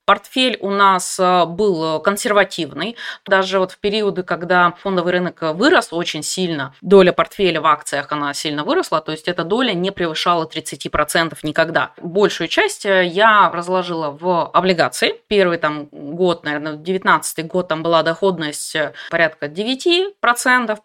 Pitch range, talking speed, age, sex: 165-230 Hz, 135 wpm, 20-39, female